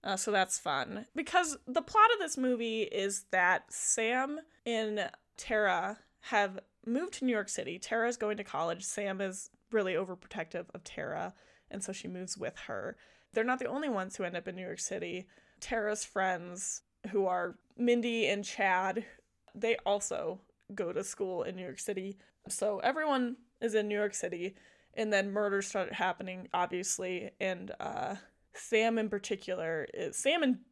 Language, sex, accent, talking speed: English, female, American, 170 wpm